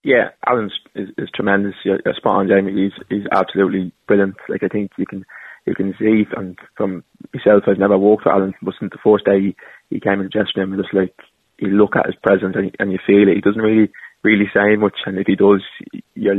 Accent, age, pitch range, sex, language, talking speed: British, 20-39, 95-100 Hz, male, English, 230 wpm